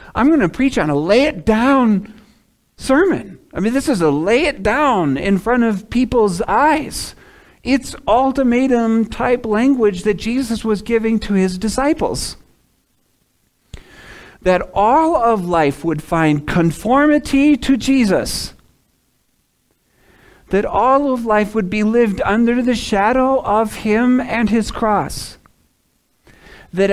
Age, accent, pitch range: 40-59, American, 175-235 Hz